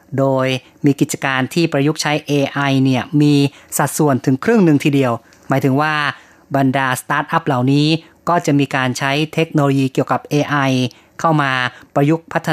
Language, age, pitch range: Thai, 20-39, 130-155 Hz